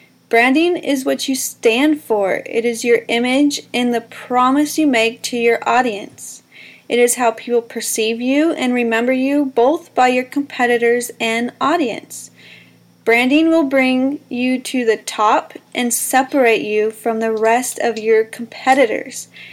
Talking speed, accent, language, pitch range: 150 wpm, American, English, 225-260 Hz